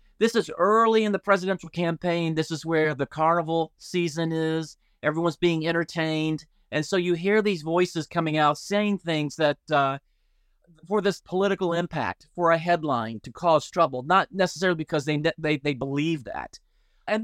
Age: 30-49